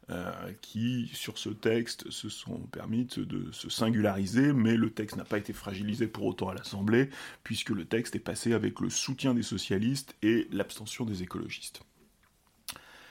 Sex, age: male, 30-49